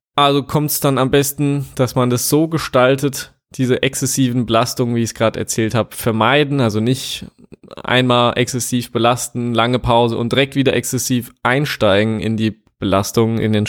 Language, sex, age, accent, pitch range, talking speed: German, male, 20-39, German, 110-130 Hz, 165 wpm